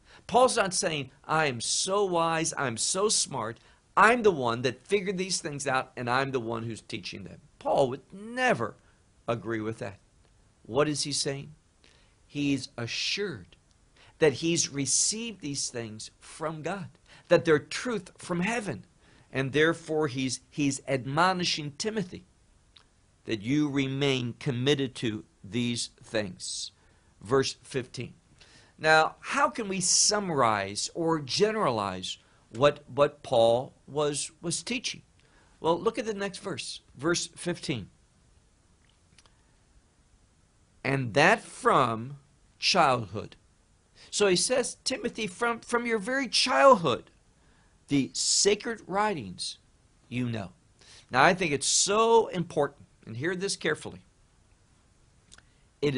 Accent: American